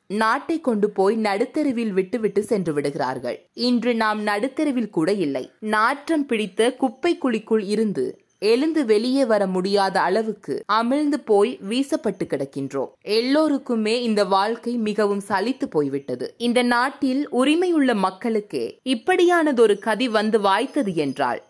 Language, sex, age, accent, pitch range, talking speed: Tamil, female, 20-39, native, 205-265 Hz, 120 wpm